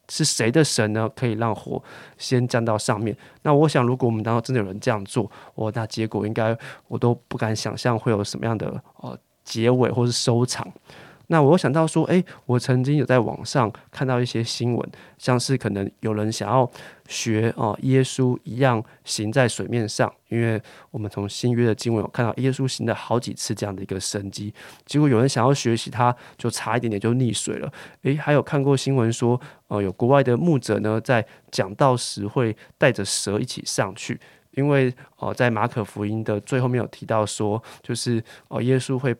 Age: 20-39